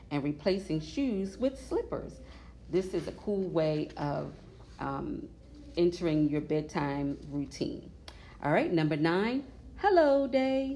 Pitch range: 145-205 Hz